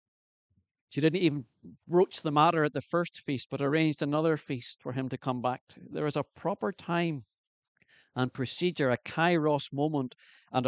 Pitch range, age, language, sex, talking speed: 115-145 Hz, 50-69, English, male, 175 wpm